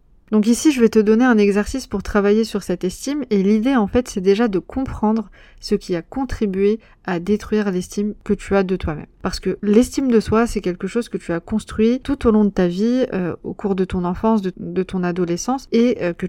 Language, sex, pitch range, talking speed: French, female, 185-220 Hz, 235 wpm